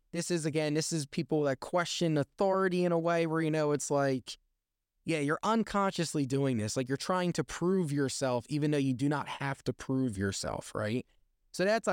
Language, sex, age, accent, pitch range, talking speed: English, male, 20-39, American, 130-175 Hz, 200 wpm